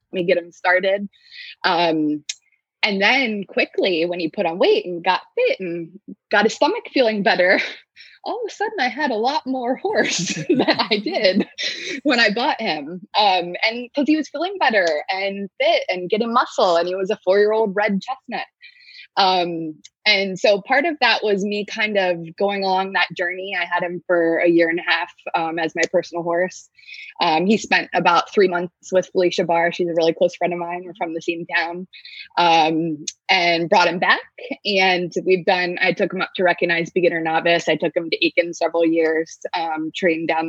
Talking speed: 200 wpm